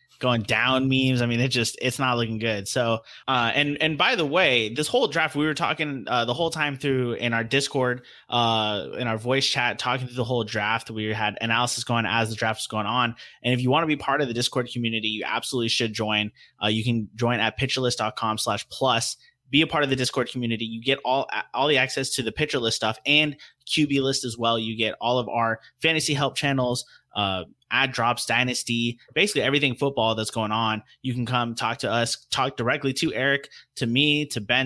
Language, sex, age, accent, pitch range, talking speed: English, male, 20-39, American, 115-135 Hz, 225 wpm